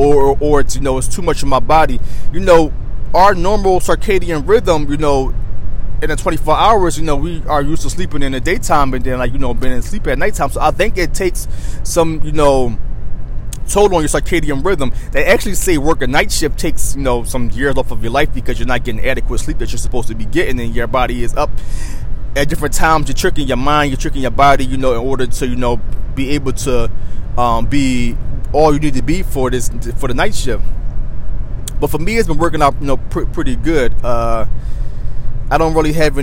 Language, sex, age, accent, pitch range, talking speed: English, male, 20-39, American, 120-150 Hz, 230 wpm